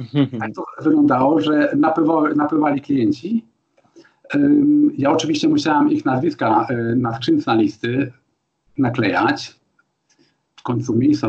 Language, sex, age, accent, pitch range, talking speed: Polish, male, 50-69, native, 120-175 Hz, 100 wpm